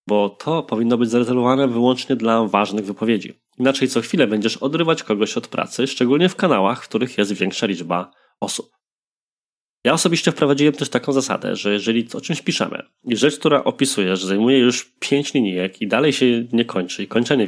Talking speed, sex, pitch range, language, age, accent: 180 wpm, male, 105-140 Hz, Polish, 20-39, native